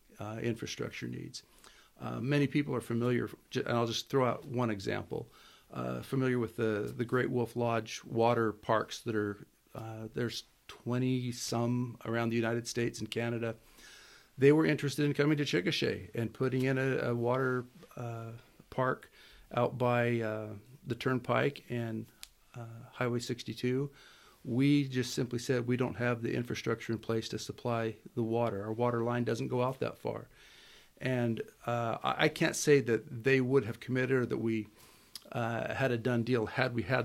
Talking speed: 170 wpm